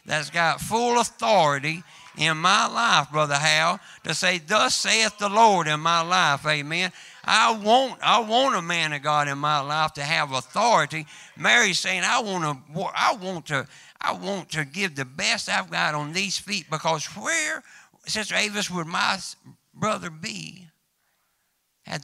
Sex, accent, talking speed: male, American, 165 wpm